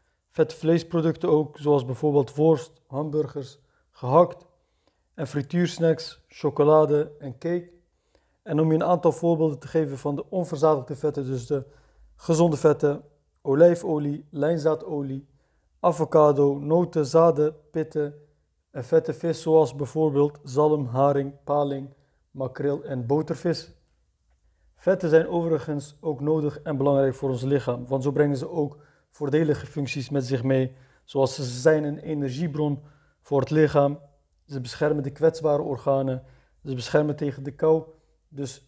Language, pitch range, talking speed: Dutch, 140-160 Hz, 130 wpm